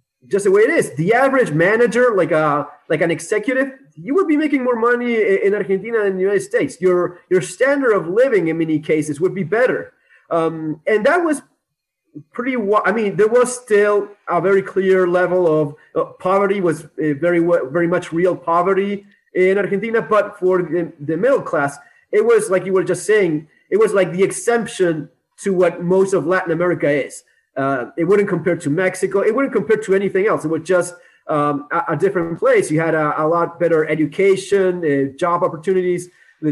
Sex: male